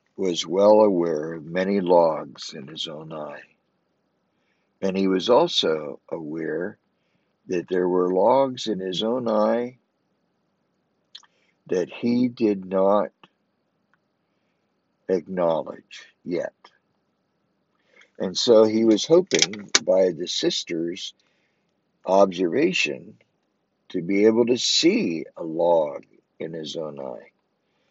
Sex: male